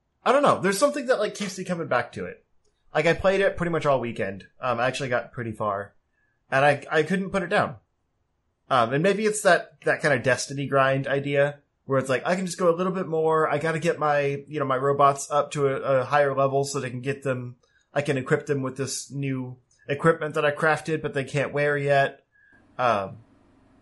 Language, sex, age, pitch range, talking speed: English, male, 20-39, 125-150 Hz, 235 wpm